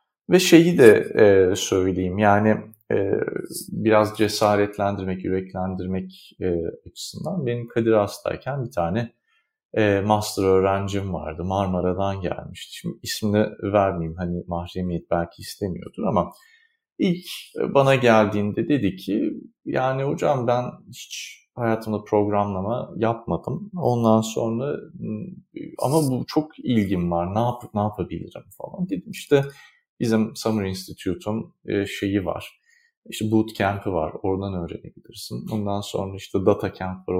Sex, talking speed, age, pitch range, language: male, 110 wpm, 40-59, 95-135 Hz, Turkish